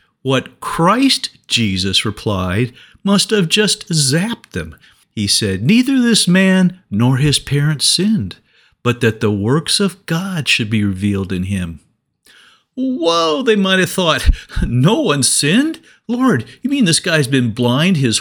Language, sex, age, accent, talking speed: English, male, 50-69, American, 150 wpm